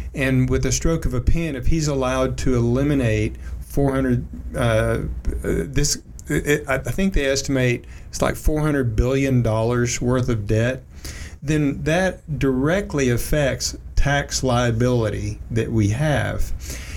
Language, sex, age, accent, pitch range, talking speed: English, male, 40-59, American, 110-135 Hz, 130 wpm